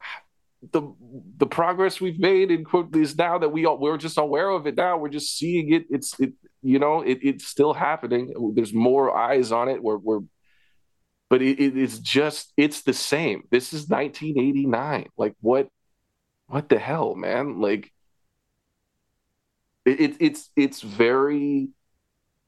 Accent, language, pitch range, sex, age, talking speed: American, English, 110-155 Hz, male, 30-49, 160 wpm